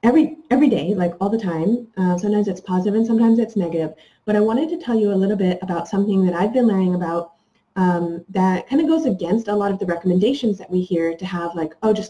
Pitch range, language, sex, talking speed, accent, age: 180-225 Hz, English, female, 250 wpm, American, 20-39